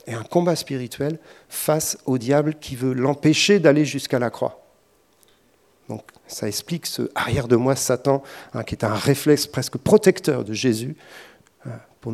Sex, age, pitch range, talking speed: male, 50-69, 120-165 Hz, 150 wpm